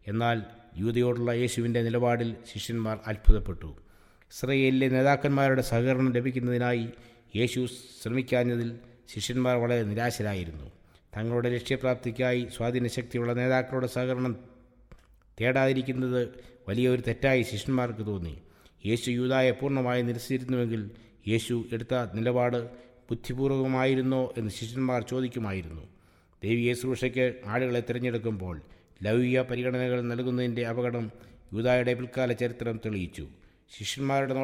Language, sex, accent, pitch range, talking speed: English, male, Indian, 110-125 Hz, 90 wpm